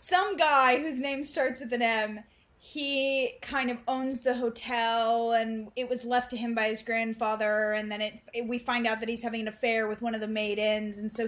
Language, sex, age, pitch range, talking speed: English, female, 10-29, 215-255 Hz, 225 wpm